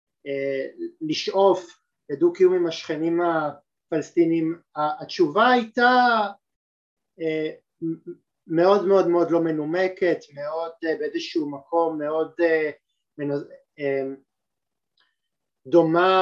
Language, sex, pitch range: Hebrew, male, 150-185 Hz